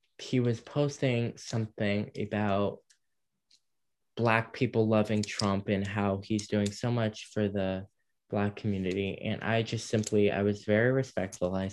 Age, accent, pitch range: 10-29, American, 100-110 Hz